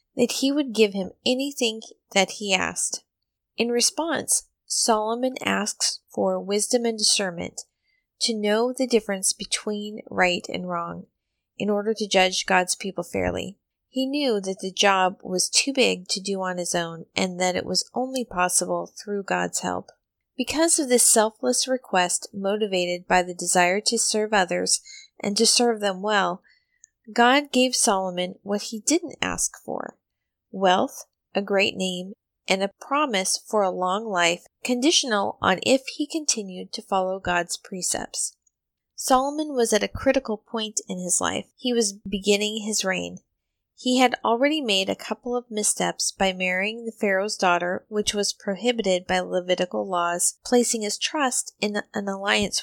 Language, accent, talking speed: English, American, 155 wpm